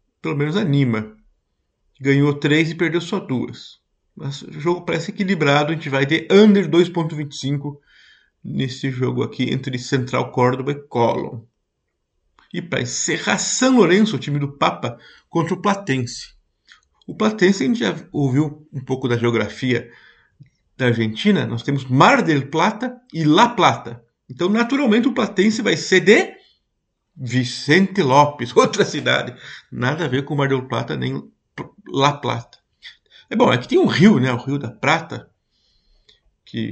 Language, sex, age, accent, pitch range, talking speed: Portuguese, male, 50-69, Brazilian, 120-165 Hz, 150 wpm